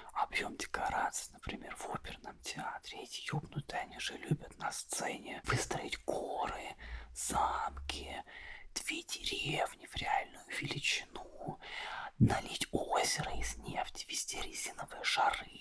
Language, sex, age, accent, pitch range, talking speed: Russian, male, 20-39, native, 95-100 Hz, 110 wpm